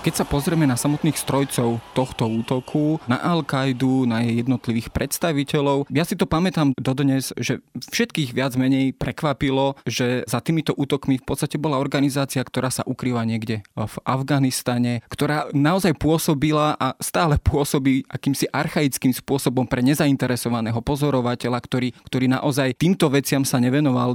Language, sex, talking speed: Slovak, male, 145 wpm